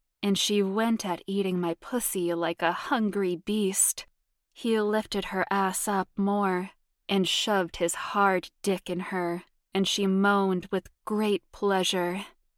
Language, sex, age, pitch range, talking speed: English, female, 20-39, 185-205 Hz, 145 wpm